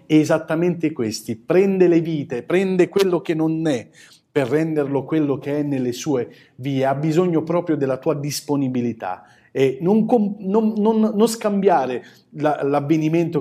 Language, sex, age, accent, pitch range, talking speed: Italian, male, 40-59, native, 135-175 Hz, 135 wpm